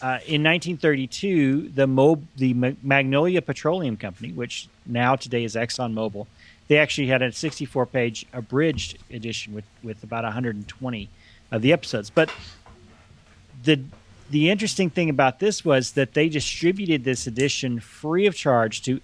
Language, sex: English, male